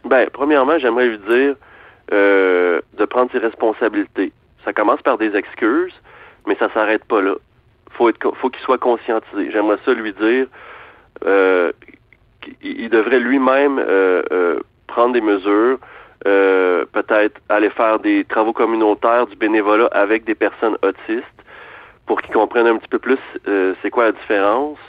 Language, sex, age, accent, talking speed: French, male, 30-49, French, 150 wpm